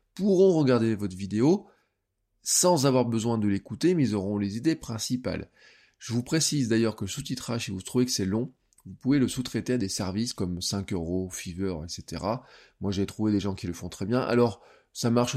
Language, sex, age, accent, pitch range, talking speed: French, male, 20-39, French, 100-125 Hz, 205 wpm